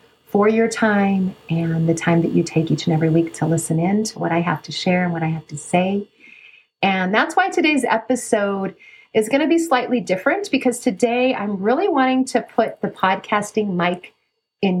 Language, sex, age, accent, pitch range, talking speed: English, female, 40-59, American, 180-235 Hz, 205 wpm